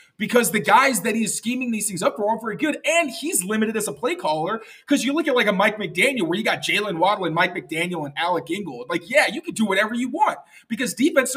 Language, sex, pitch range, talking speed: English, male, 175-230 Hz, 260 wpm